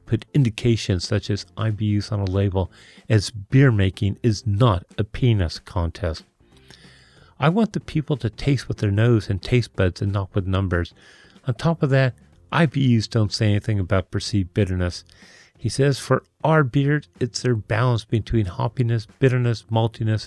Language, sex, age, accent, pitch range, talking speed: English, male, 40-59, American, 95-130 Hz, 165 wpm